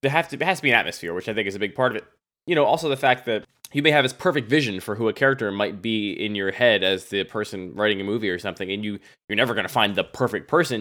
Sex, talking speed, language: male, 305 wpm, English